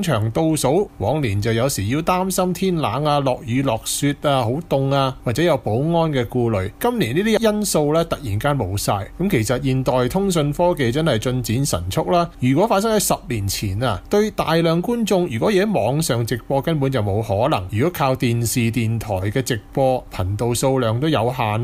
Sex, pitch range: male, 115-170 Hz